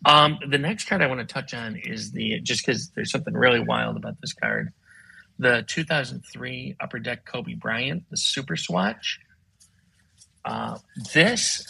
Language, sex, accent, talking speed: English, male, American, 160 wpm